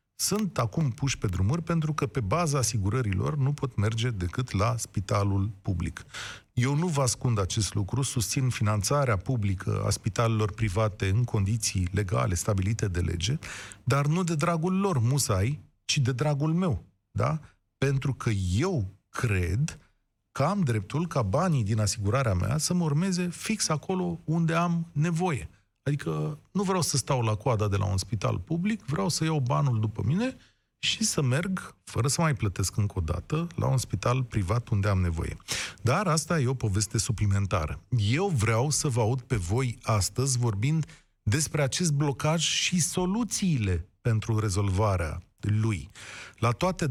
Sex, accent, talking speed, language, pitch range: male, native, 160 wpm, Romanian, 105-150 Hz